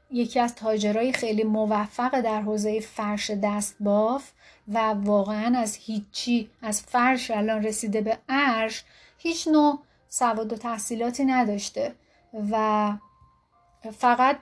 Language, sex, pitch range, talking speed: Persian, female, 220-270 Hz, 115 wpm